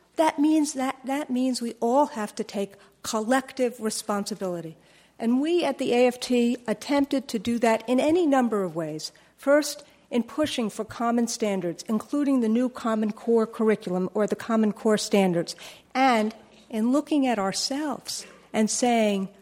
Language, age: English, 50-69